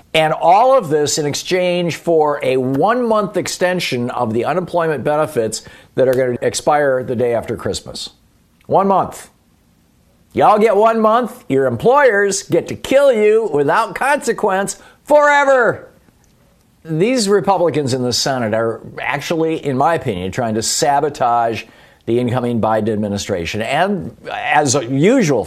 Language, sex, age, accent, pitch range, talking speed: English, male, 50-69, American, 120-190 Hz, 140 wpm